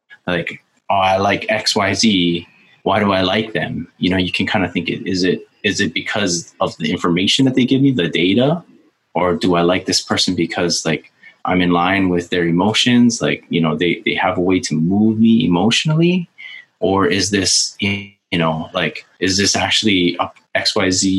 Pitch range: 85-110 Hz